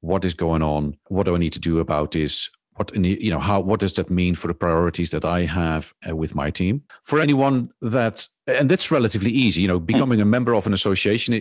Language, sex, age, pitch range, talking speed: English, male, 50-69, 85-105 Hz, 235 wpm